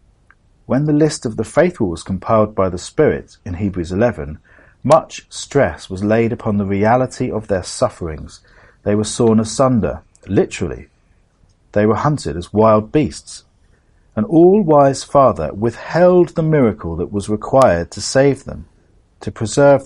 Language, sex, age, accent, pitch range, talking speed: English, male, 40-59, British, 100-140 Hz, 150 wpm